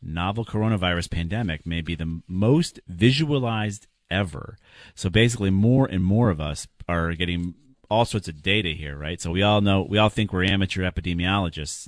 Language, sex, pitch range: English, male, 80-95 Hz